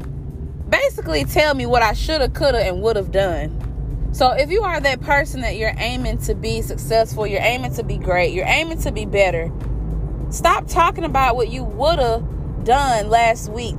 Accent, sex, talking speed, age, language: American, female, 195 wpm, 20-39, English